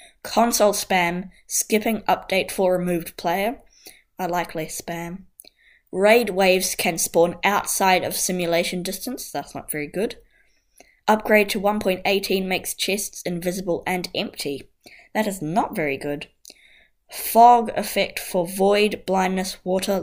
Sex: female